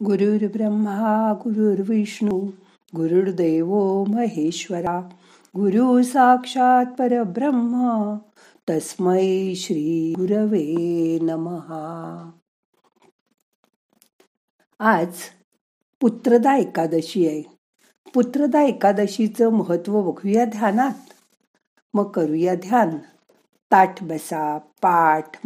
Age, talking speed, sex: 60-79, 60 wpm, female